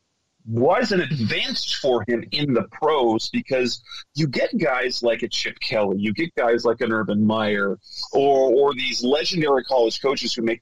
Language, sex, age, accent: English, male, 30-49, American